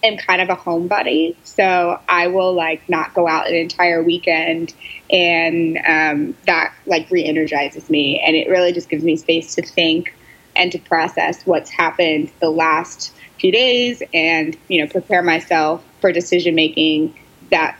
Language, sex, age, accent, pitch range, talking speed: English, female, 20-39, American, 160-180 Hz, 160 wpm